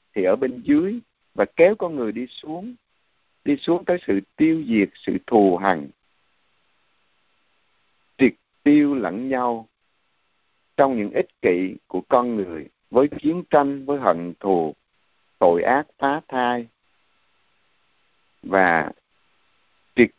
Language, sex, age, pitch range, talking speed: Vietnamese, male, 50-69, 110-160 Hz, 125 wpm